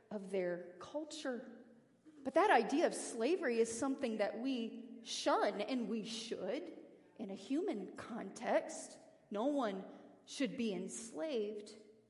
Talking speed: 125 wpm